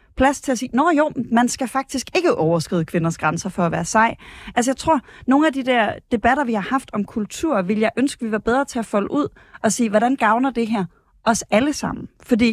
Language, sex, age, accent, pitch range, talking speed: Danish, female, 30-49, native, 195-245 Hz, 250 wpm